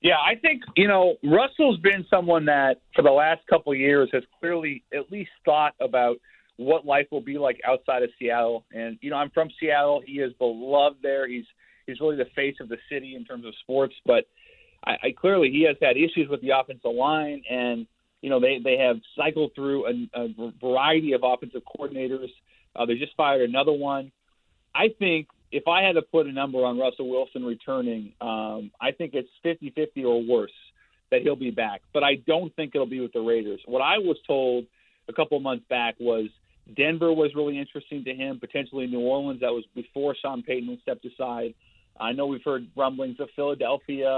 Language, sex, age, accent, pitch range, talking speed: English, male, 40-59, American, 125-155 Hz, 200 wpm